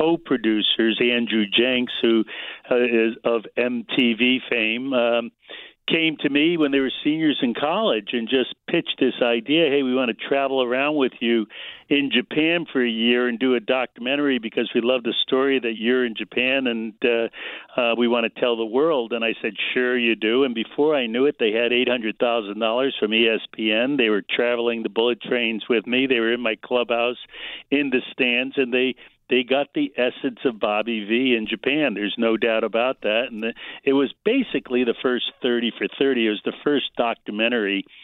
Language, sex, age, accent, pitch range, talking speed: English, male, 60-79, American, 115-140 Hz, 195 wpm